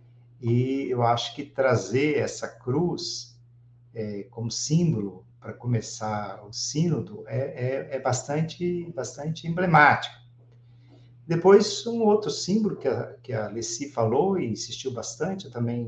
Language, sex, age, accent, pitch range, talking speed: Portuguese, male, 50-69, Brazilian, 115-145 Hz, 130 wpm